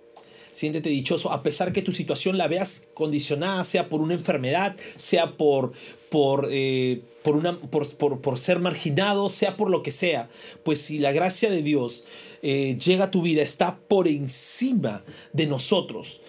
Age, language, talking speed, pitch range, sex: 40-59, Spanish, 170 wpm, 145-195 Hz, male